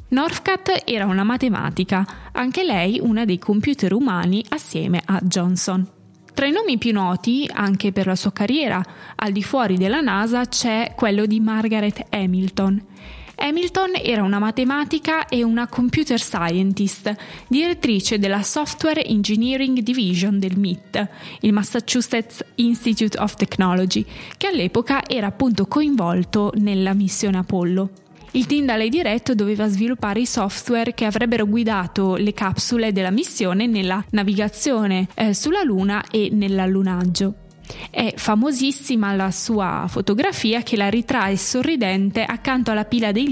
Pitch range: 195-245 Hz